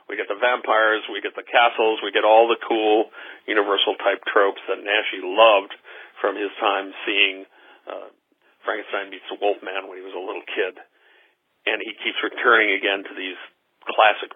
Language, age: English, 50-69